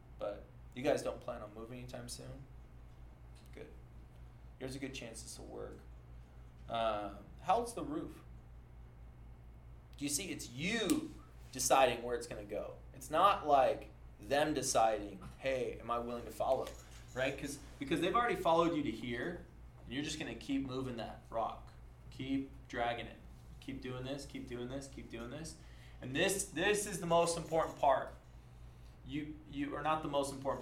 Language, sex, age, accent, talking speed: English, male, 20-39, American, 165 wpm